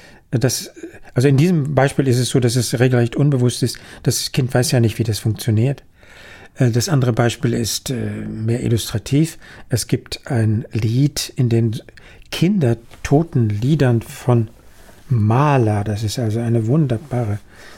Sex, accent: male, German